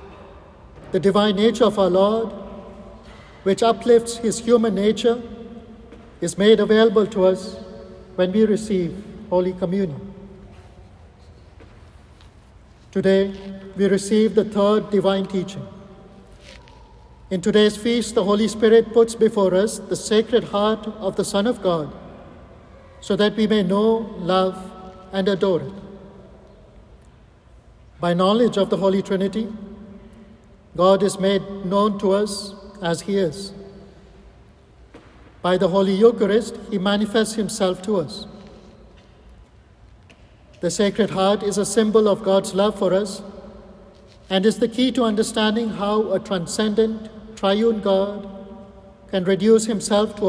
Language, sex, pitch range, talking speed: English, male, 190-215 Hz, 125 wpm